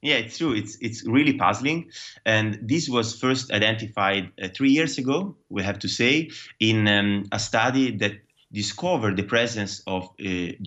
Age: 20-39